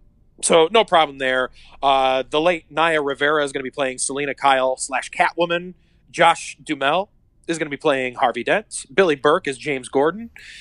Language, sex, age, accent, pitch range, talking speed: English, male, 30-49, American, 125-160 Hz, 180 wpm